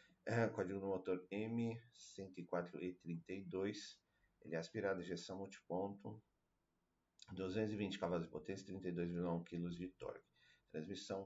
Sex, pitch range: male, 85-100 Hz